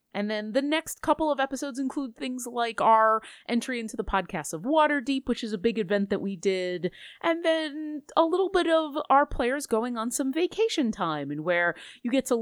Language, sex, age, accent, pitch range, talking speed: English, female, 30-49, American, 175-260 Hz, 210 wpm